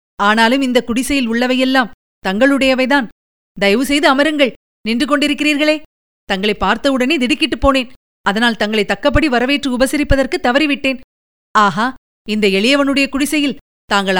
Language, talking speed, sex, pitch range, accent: Tamil, 105 wpm, female, 200-260 Hz, native